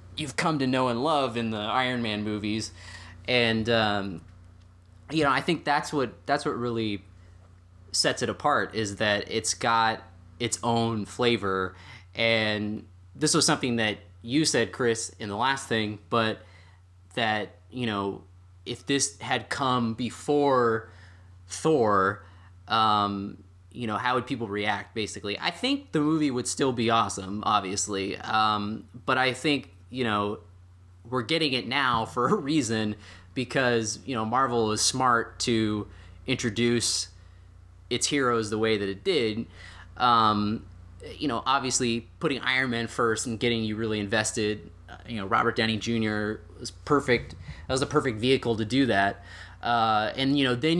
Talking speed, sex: 155 wpm, male